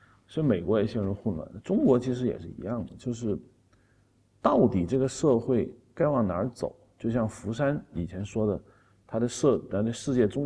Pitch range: 100-125 Hz